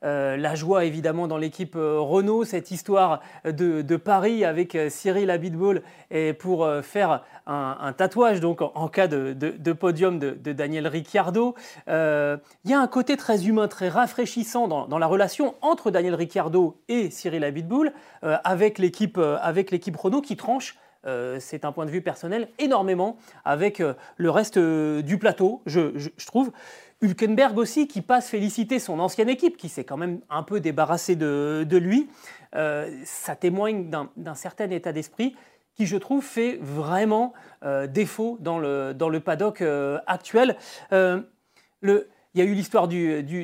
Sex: male